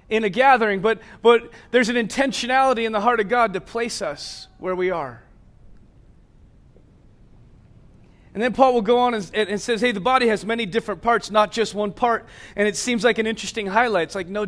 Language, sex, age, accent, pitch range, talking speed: English, male, 30-49, American, 185-240 Hz, 205 wpm